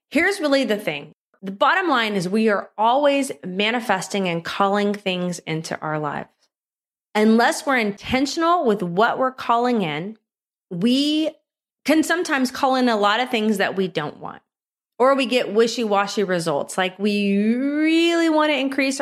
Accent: American